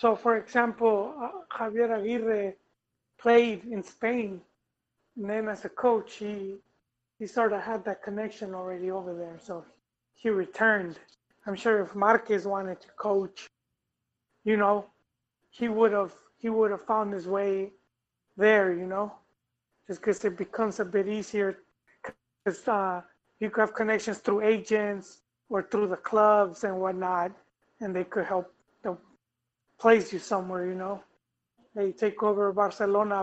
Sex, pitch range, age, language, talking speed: male, 185-220 Hz, 30-49, English, 145 wpm